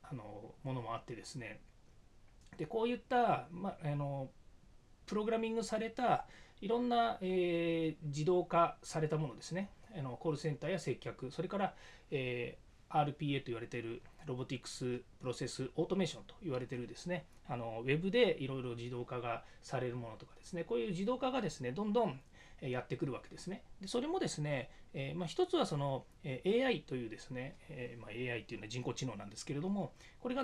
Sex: male